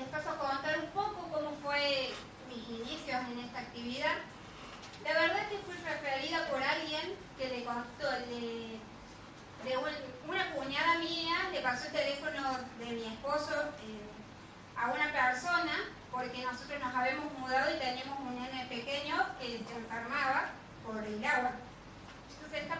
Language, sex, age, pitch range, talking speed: Spanish, female, 20-39, 235-295 Hz, 140 wpm